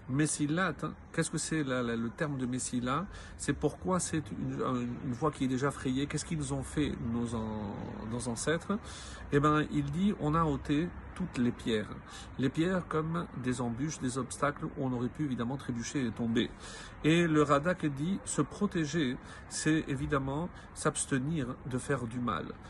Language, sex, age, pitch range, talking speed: French, male, 50-69, 125-155 Hz, 175 wpm